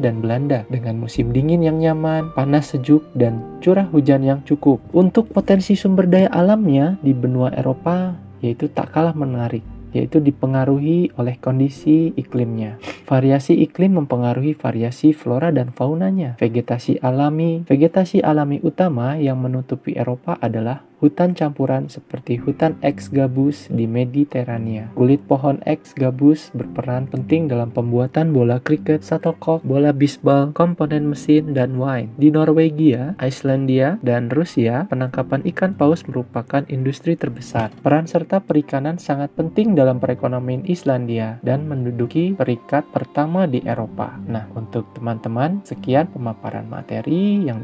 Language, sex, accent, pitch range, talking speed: Indonesian, male, native, 125-160 Hz, 130 wpm